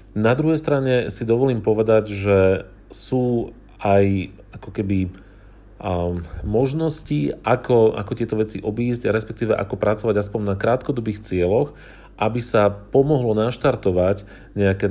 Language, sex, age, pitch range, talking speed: Slovak, male, 40-59, 95-120 Hz, 120 wpm